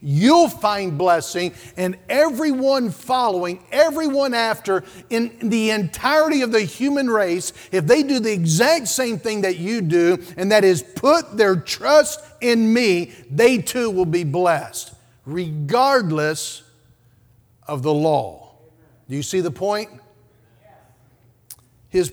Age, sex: 50-69, male